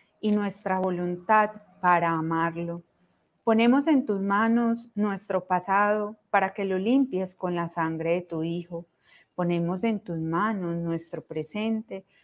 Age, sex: 30-49, female